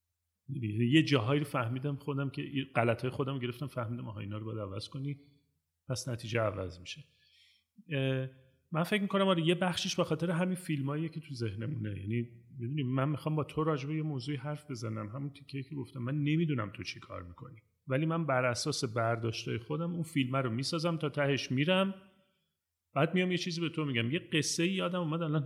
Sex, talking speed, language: male, 190 wpm, Persian